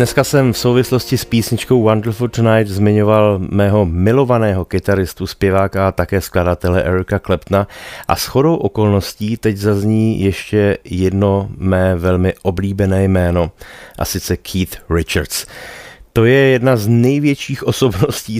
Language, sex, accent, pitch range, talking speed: Czech, male, native, 90-105 Hz, 130 wpm